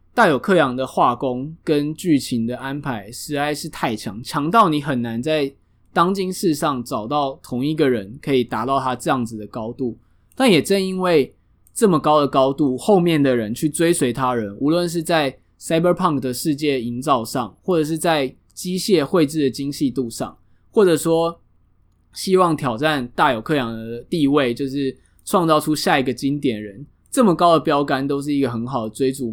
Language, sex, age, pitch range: Chinese, male, 20-39, 120-165 Hz